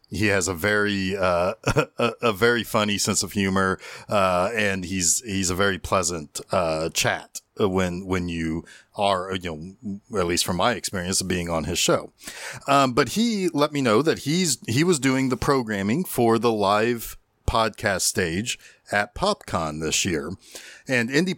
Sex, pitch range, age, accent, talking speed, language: male, 95-125 Hz, 40-59, American, 170 wpm, English